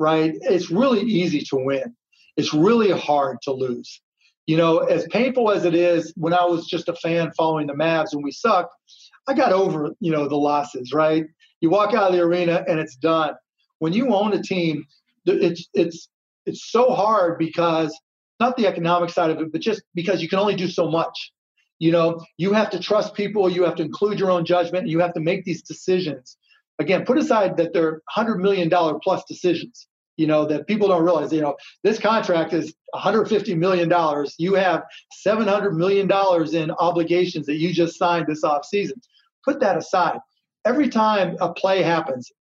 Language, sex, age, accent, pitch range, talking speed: English, male, 40-59, American, 160-195 Hz, 190 wpm